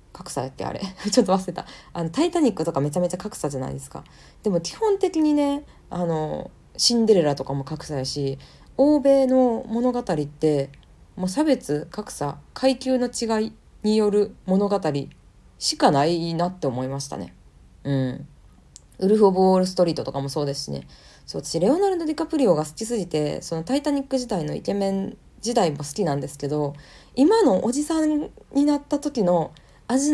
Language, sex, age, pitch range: Japanese, female, 20-39, 145-215 Hz